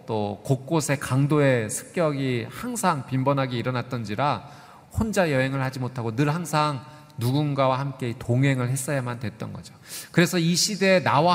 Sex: male